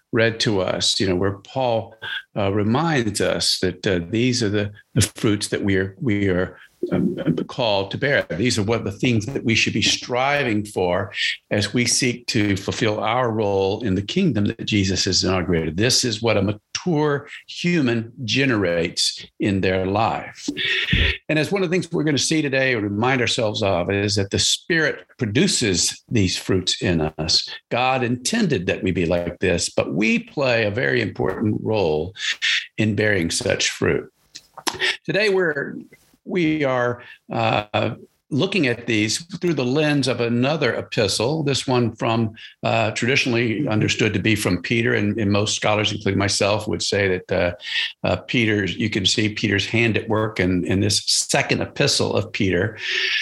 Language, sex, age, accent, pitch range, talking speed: English, male, 50-69, American, 100-125 Hz, 175 wpm